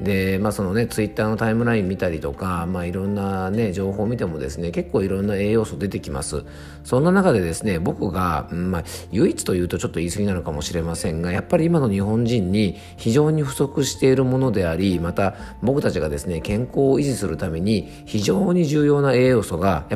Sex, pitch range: male, 85-115 Hz